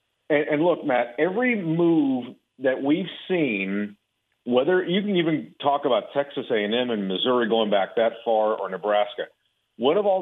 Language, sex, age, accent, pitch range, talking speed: English, male, 50-69, American, 125-170 Hz, 160 wpm